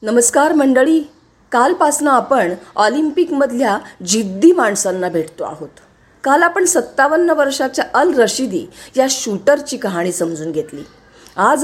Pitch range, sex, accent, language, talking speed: 195-295 Hz, female, native, Marathi, 110 wpm